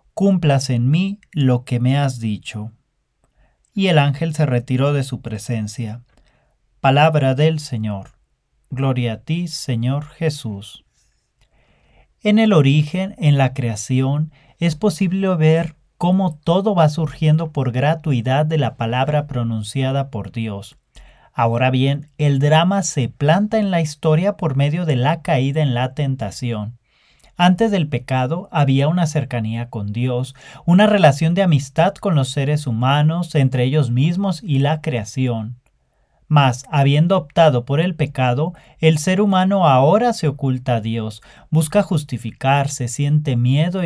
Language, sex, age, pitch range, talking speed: English, male, 40-59, 125-160 Hz, 140 wpm